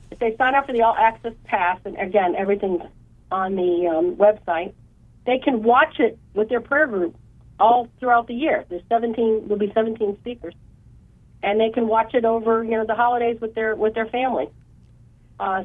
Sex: female